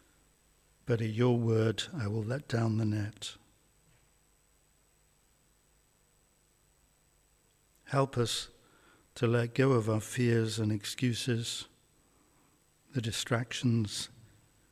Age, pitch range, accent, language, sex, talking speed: 60-79, 115-125 Hz, British, English, male, 90 wpm